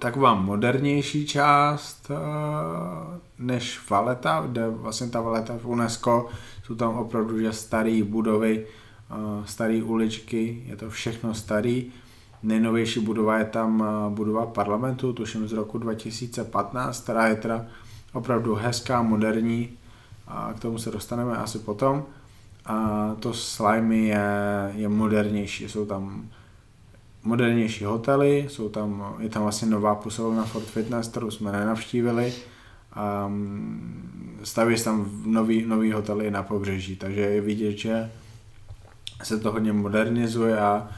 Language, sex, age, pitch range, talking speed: Slovak, male, 20-39, 105-115 Hz, 125 wpm